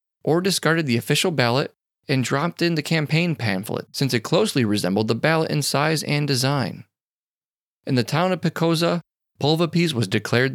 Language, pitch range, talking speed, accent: English, 115-160 Hz, 165 wpm, American